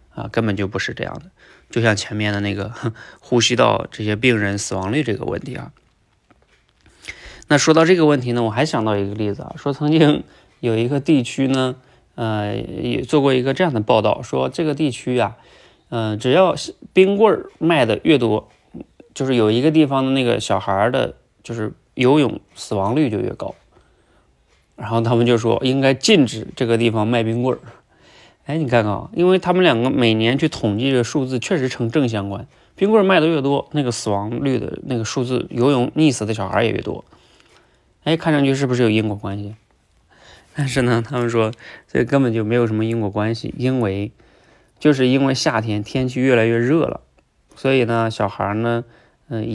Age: 20-39